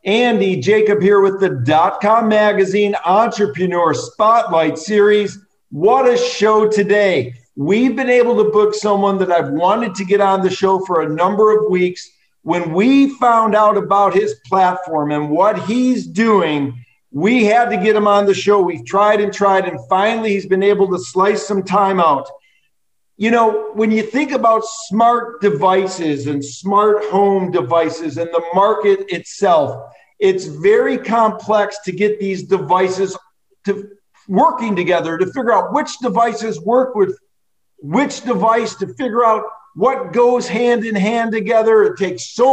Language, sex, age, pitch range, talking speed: English, male, 50-69, 185-225 Hz, 160 wpm